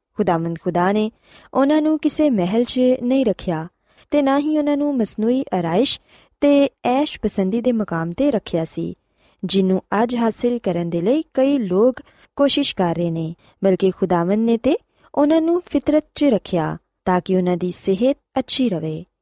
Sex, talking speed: female, 130 wpm